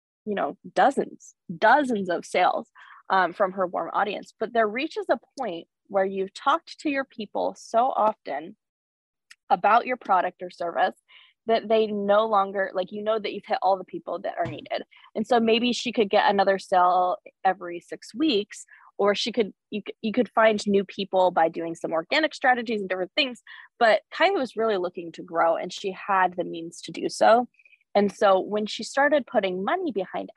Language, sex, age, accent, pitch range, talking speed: English, female, 20-39, American, 185-245 Hz, 190 wpm